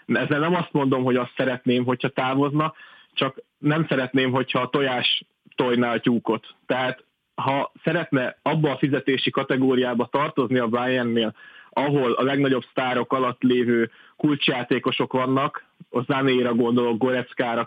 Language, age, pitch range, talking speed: Hungarian, 30-49, 120-145 Hz, 145 wpm